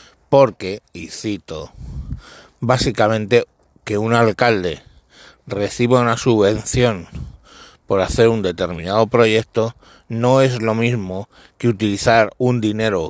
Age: 60-79